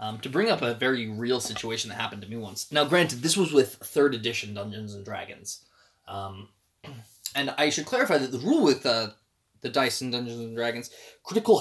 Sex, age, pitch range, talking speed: male, 20-39, 115-175 Hz, 205 wpm